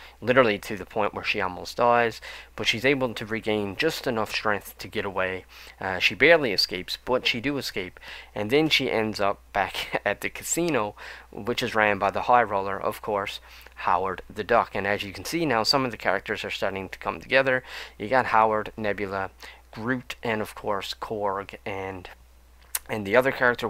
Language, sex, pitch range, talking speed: English, male, 100-130 Hz, 195 wpm